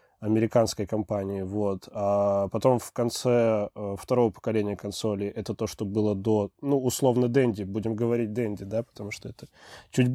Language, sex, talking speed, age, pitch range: Russian, male, 155 wpm, 20-39, 110-130 Hz